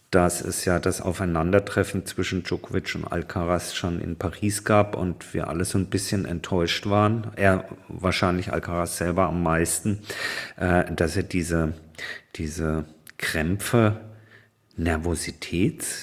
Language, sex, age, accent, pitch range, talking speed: German, male, 50-69, German, 85-100 Hz, 125 wpm